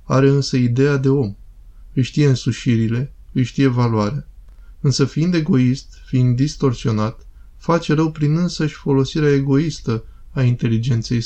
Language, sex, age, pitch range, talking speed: Romanian, male, 20-39, 115-140 Hz, 130 wpm